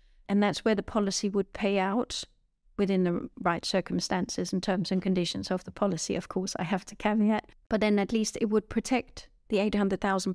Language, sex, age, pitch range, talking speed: English, female, 40-59, 190-210 Hz, 195 wpm